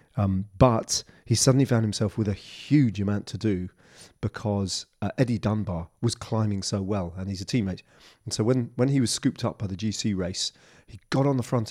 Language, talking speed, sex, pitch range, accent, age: English, 210 wpm, male, 100-130 Hz, British, 30-49